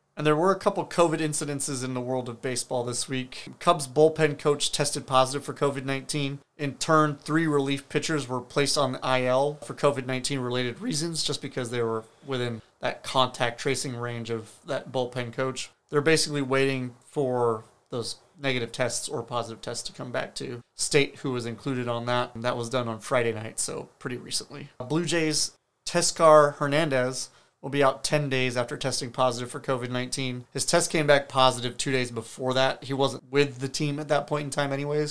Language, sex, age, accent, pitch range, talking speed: English, male, 30-49, American, 125-145 Hz, 190 wpm